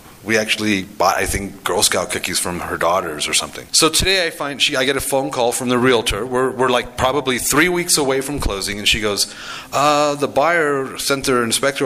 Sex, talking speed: male, 225 wpm